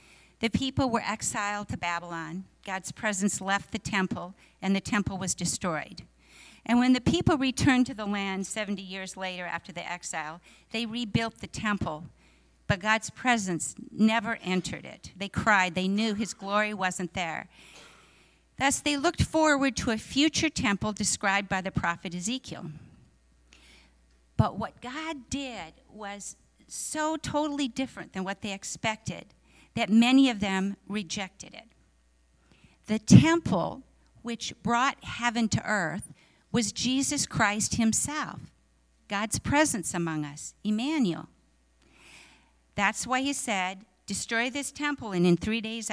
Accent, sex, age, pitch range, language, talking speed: American, female, 50-69, 185-240 Hz, English, 140 wpm